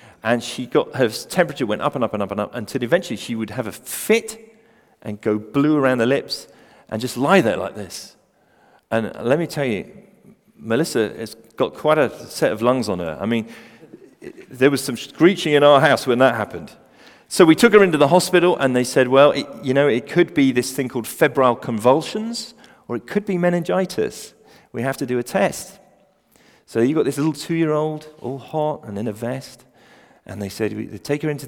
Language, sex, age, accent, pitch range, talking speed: English, male, 40-59, British, 120-155 Hz, 215 wpm